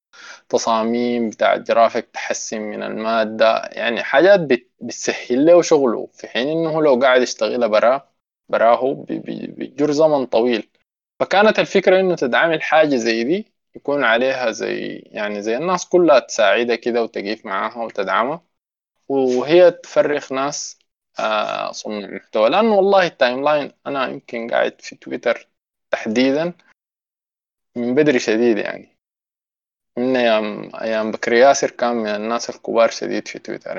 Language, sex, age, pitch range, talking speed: Arabic, male, 20-39, 115-180 Hz, 125 wpm